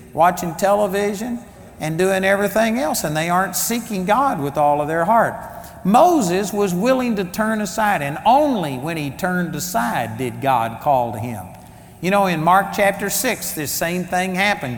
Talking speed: 175 wpm